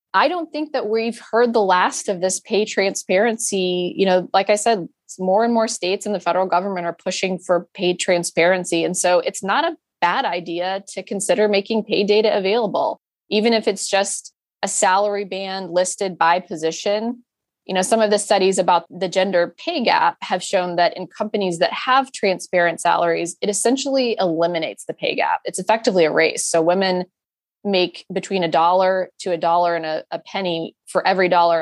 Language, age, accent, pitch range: English, 20-39, American, 170-200 Hz